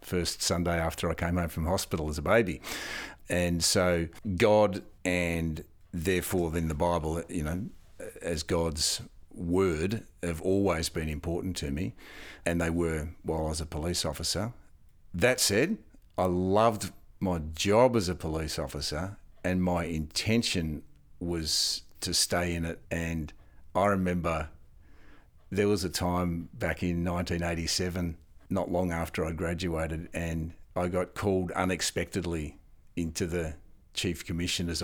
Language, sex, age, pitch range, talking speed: English, male, 50-69, 80-95 Hz, 140 wpm